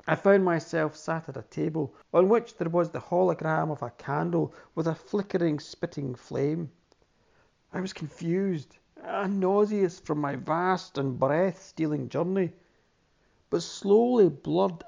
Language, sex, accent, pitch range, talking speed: English, male, British, 145-185 Hz, 140 wpm